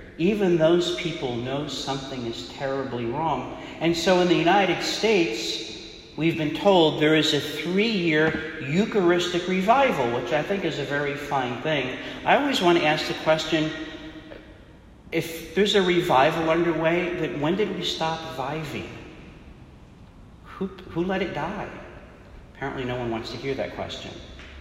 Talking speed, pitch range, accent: 150 wpm, 135-180 Hz, American